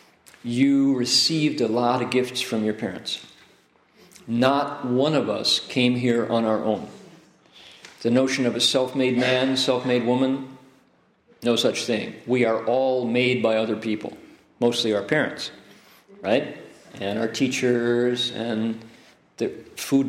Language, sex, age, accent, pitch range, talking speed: English, male, 50-69, American, 120-160 Hz, 135 wpm